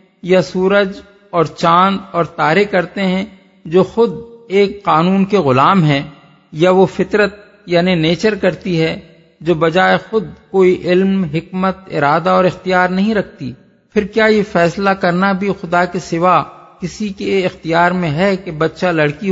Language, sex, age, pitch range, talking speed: Urdu, male, 50-69, 160-195 Hz, 155 wpm